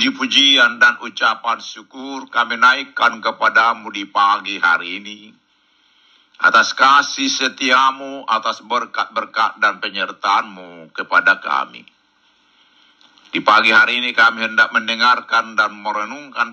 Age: 50-69